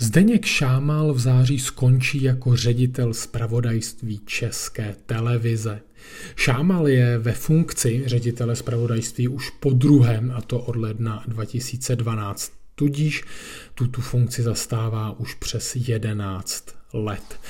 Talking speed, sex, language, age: 110 wpm, male, Czech, 40-59